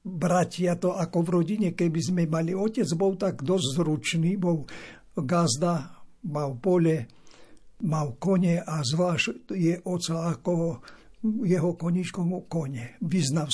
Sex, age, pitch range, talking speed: male, 60-79, 165-205 Hz, 130 wpm